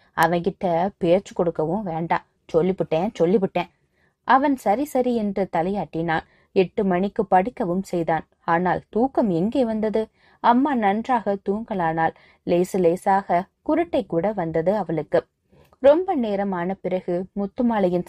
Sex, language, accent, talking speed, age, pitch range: female, Tamil, native, 80 wpm, 20-39, 175-225 Hz